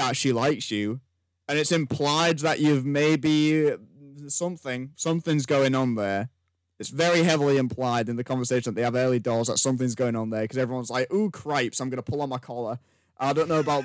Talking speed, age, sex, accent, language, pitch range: 205 wpm, 10-29, male, British, English, 115-175 Hz